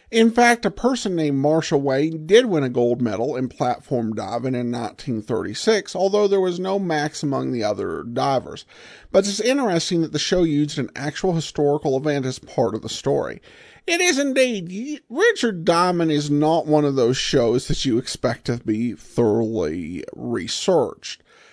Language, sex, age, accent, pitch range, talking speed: English, male, 50-69, American, 135-205 Hz, 165 wpm